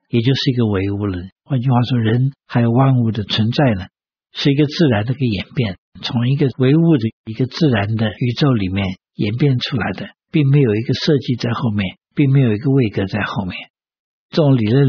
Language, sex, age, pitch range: Chinese, male, 60-79, 115-145 Hz